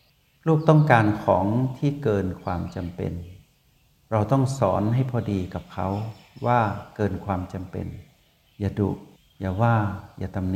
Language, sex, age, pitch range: Thai, male, 60-79, 95-125 Hz